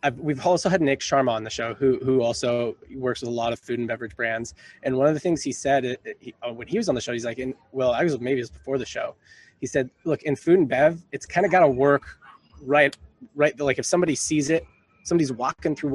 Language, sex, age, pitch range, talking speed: English, male, 20-39, 120-145 Hz, 275 wpm